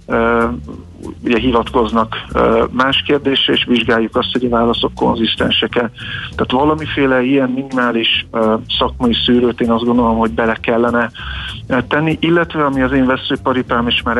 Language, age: Hungarian, 50-69